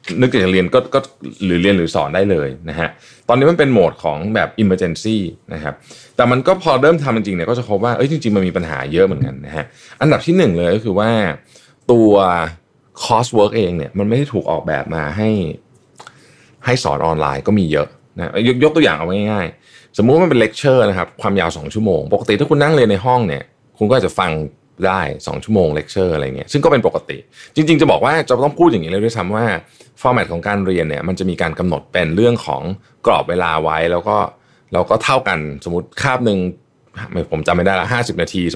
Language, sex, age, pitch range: Thai, male, 20-39, 90-125 Hz